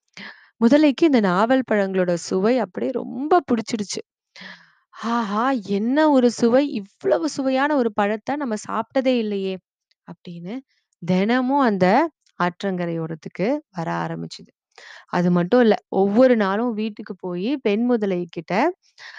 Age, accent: 20-39, native